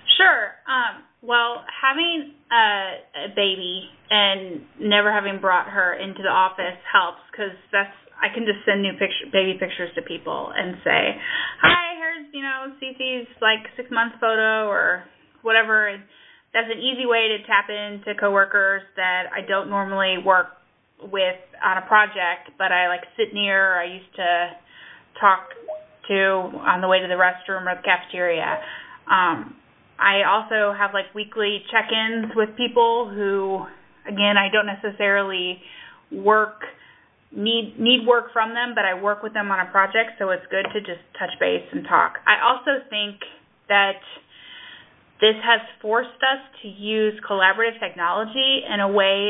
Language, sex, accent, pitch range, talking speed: English, female, American, 190-230 Hz, 155 wpm